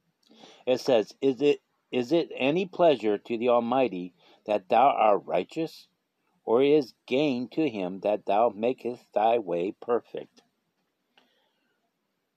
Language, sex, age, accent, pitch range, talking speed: English, male, 50-69, American, 125-180 Hz, 135 wpm